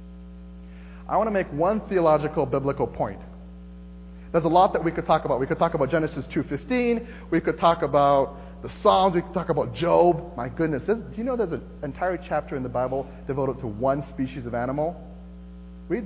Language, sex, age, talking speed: English, male, 40-59, 195 wpm